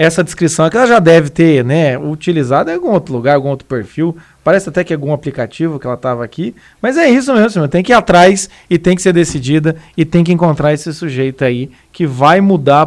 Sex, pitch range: male, 145-190 Hz